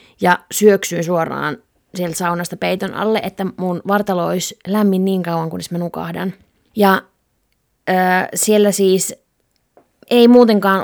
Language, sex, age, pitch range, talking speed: Finnish, female, 20-39, 180-215 Hz, 125 wpm